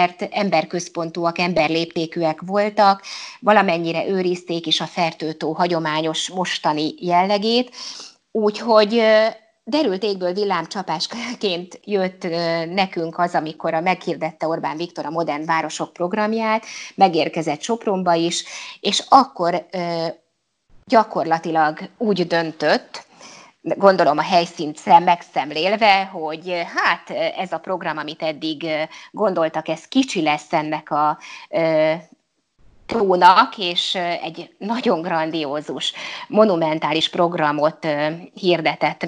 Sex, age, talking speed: female, 20-39, 95 wpm